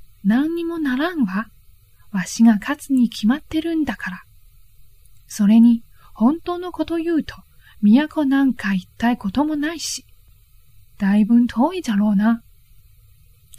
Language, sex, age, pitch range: Chinese, female, 20-39, 190-280 Hz